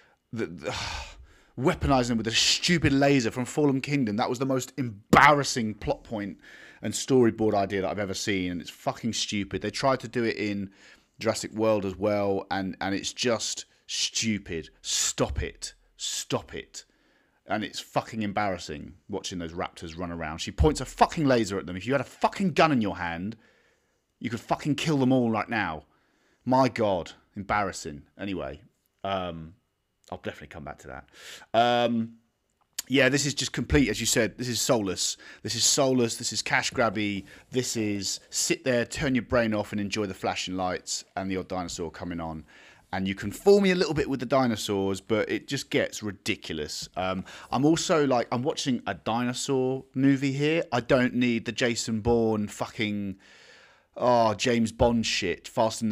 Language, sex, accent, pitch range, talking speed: English, male, British, 95-130 Hz, 180 wpm